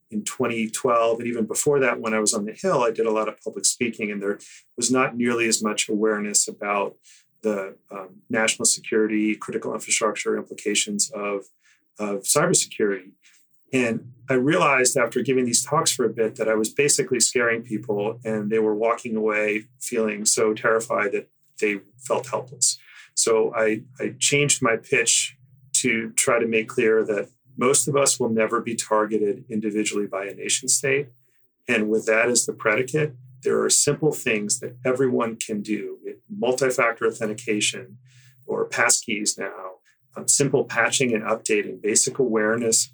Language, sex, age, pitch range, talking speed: English, male, 30-49, 110-130 Hz, 165 wpm